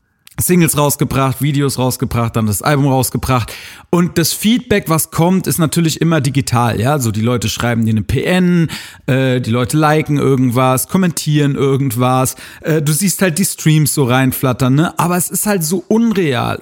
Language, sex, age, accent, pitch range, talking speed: German, male, 40-59, German, 135-190 Hz, 170 wpm